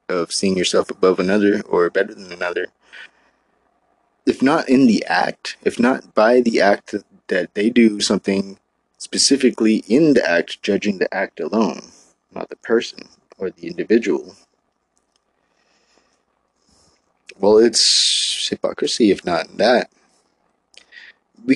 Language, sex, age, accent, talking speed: English, male, 20-39, American, 120 wpm